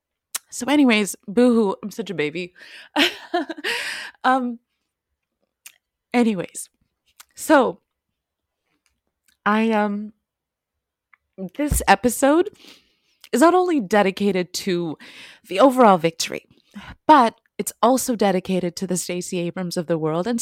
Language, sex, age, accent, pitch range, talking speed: English, female, 20-39, American, 170-225 Hz, 105 wpm